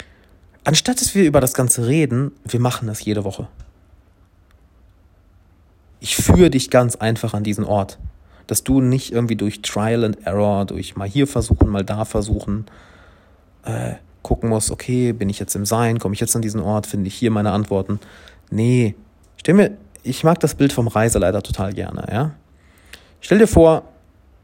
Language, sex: German, male